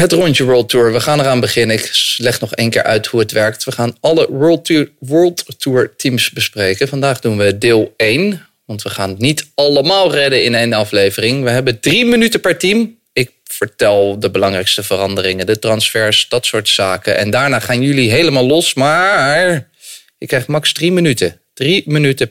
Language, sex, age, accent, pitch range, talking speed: English, male, 30-49, Dutch, 115-180 Hz, 190 wpm